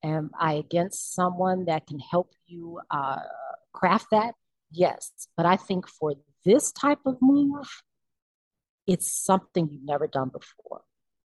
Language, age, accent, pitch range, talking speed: English, 40-59, American, 155-185 Hz, 140 wpm